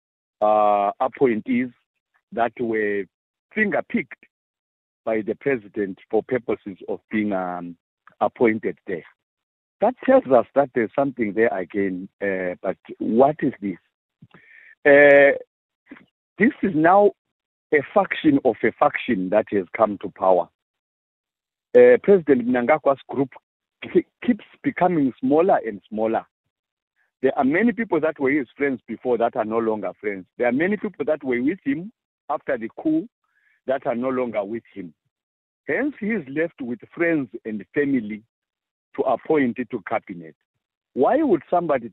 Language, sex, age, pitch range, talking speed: English, male, 50-69, 110-160 Hz, 140 wpm